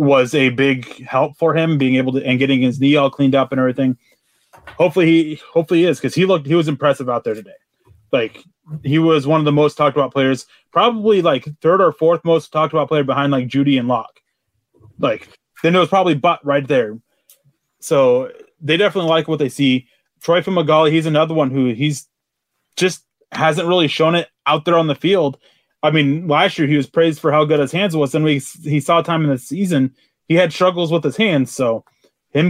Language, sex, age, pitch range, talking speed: English, male, 30-49, 140-170 Hz, 215 wpm